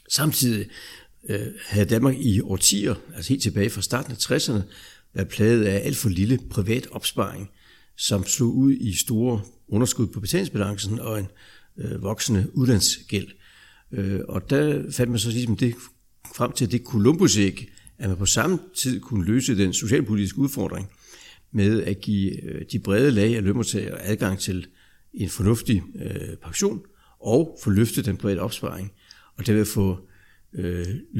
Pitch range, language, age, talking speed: 95-125 Hz, Danish, 60-79, 145 wpm